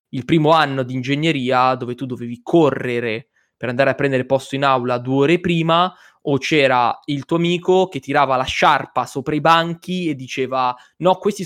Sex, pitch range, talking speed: male, 125-145 Hz, 185 wpm